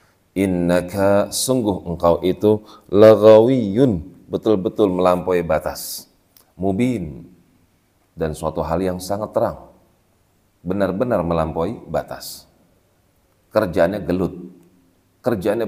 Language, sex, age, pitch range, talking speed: Indonesian, male, 40-59, 85-100 Hz, 80 wpm